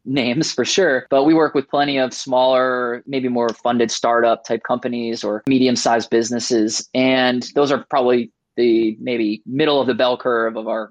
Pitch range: 125-165 Hz